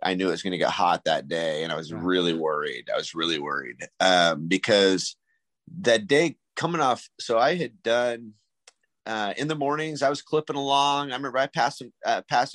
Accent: American